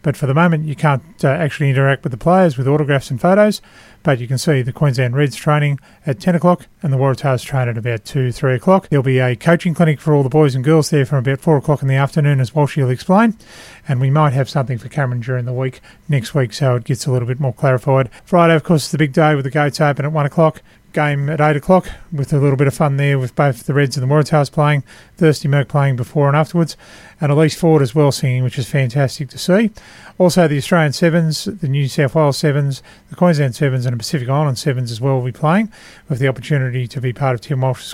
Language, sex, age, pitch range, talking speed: English, male, 30-49, 130-155 Hz, 255 wpm